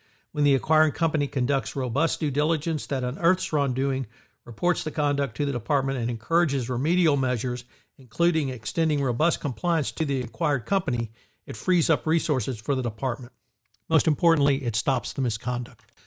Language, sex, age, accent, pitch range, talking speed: English, male, 60-79, American, 120-155 Hz, 155 wpm